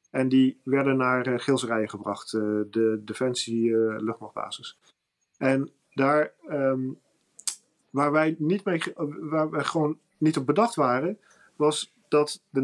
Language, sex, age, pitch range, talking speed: Dutch, male, 40-59, 125-155 Hz, 140 wpm